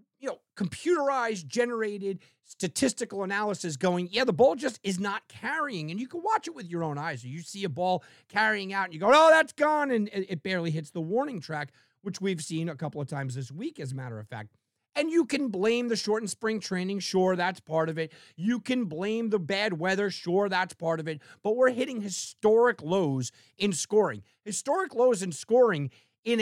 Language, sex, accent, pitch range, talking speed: English, male, American, 165-225 Hz, 210 wpm